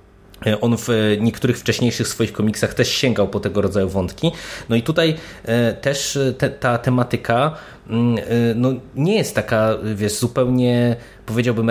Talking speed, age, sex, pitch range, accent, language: 125 wpm, 20-39, male, 100-125 Hz, native, Polish